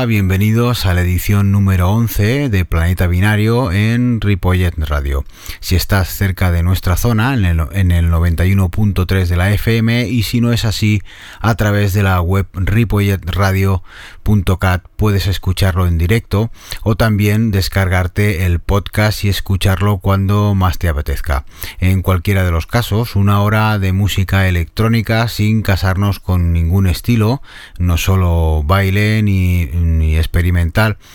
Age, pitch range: 30-49, 90-105 Hz